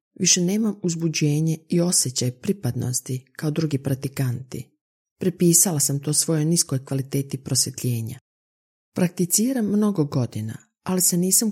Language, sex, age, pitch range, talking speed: Croatian, female, 40-59, 135-170 Hz, 115 wpm